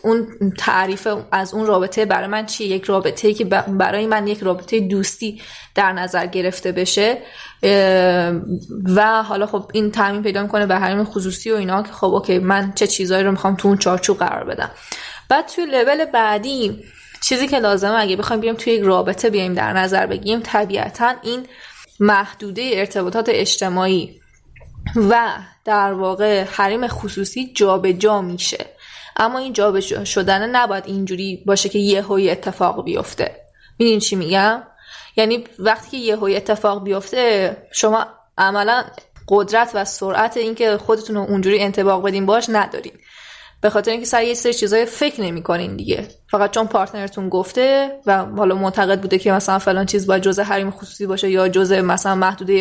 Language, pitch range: Persian, 195-220 Hz